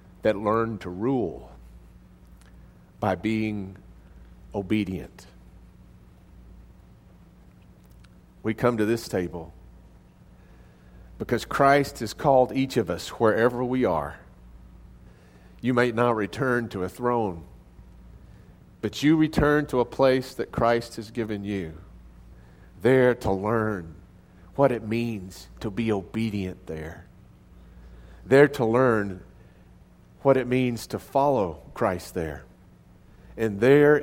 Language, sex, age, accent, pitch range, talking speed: English, male, 50-69, American, 80-120 Hz, 110 wpm